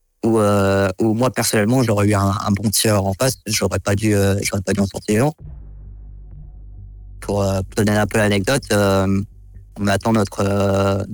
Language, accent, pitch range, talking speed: French, French, 100-110 Hz, 180 wpm